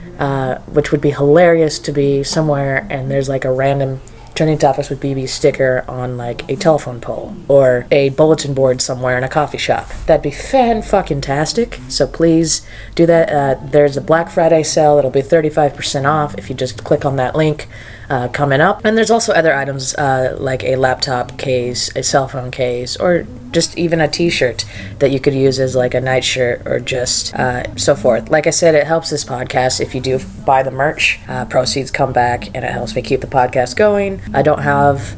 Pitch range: 130-155 Hz